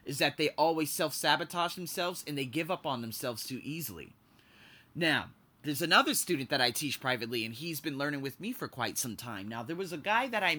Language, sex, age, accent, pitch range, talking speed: English, male, 20-39, American, 130-175 Hz, 220 wpm